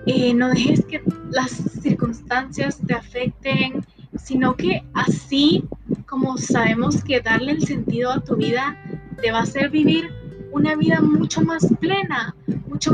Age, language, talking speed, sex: 20-39, English, 145 wpm, female